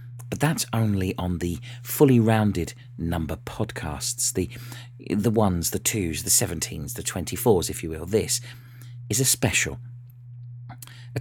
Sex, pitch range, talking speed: male, 105-125 Hz, 140 wpm